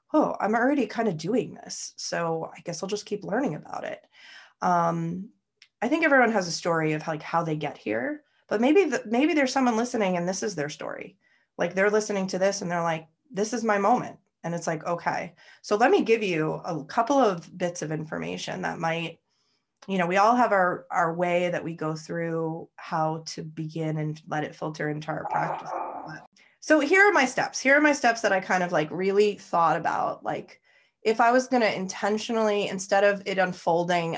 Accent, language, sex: American, English, female